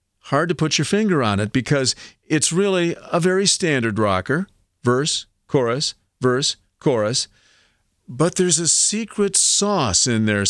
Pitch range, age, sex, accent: 105-140 Hz, 50-69, male, American